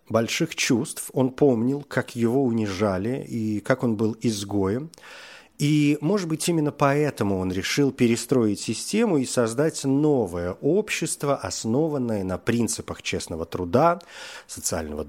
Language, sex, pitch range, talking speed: Russian, male, 110-150 Hz, 125 wpm